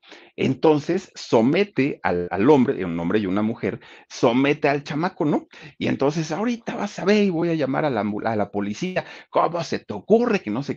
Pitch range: 105-155 Hz